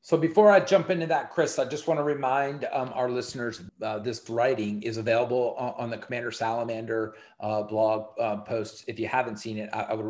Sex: male